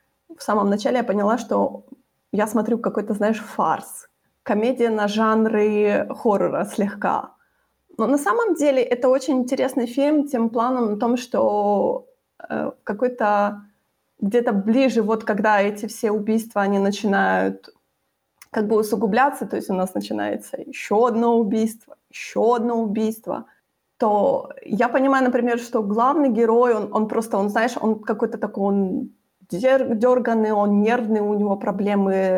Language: Ukrainian